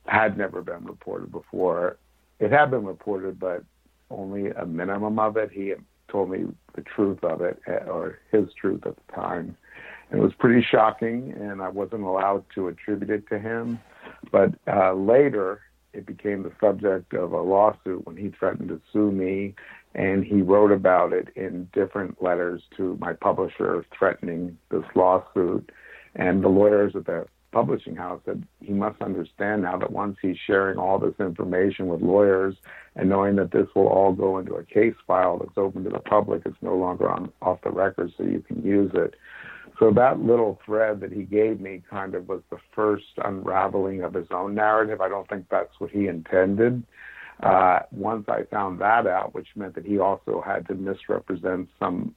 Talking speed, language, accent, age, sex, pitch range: 185 wpm, English, American, 60-79, male, 95-105 Hz